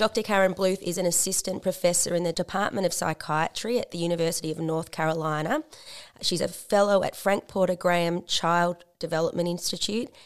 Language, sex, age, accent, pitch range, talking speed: English, female, 20-39, Australian, 160-190 Hz, 165 wpm